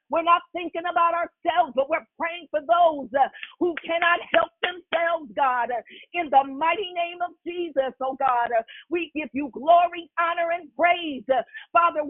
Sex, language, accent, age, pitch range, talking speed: female, English, American, 50-69, 270-340 Hz, 155 wpm